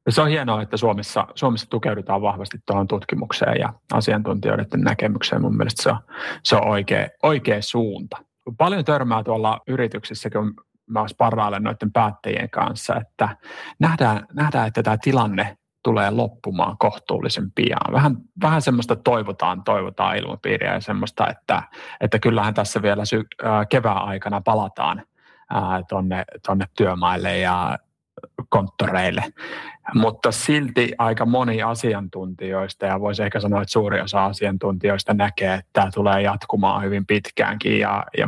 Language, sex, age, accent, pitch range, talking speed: Finnish, male, 30-49, native, 100-115 Hz, 130 wpm